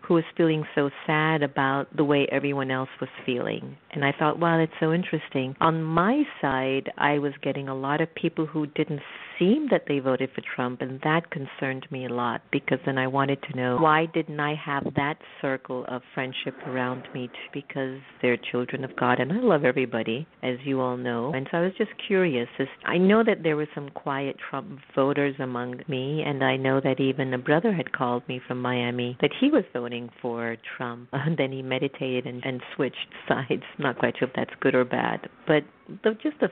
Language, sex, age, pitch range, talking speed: English, female, 50-69, 135-165 Hz, 205 wpm